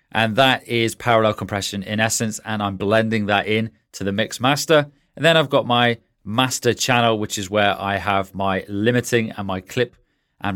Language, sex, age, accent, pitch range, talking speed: English, male, 30-49, British, 100-130 Hz, 195 wpm